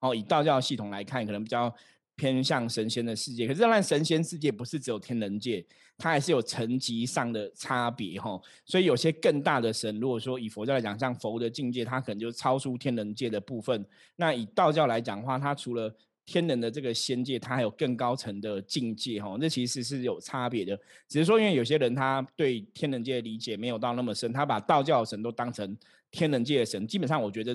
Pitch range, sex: 115-145 Hz, male